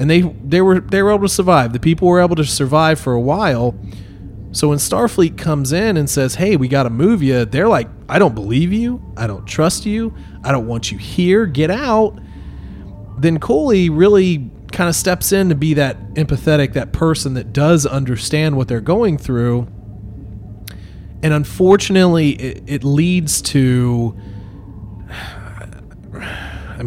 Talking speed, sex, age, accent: 165 wpm, male, 30-49, American